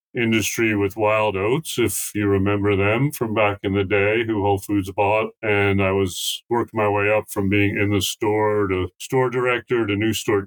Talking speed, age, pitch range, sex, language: 200 wpm, 40-59, 100-115 Hz, male, English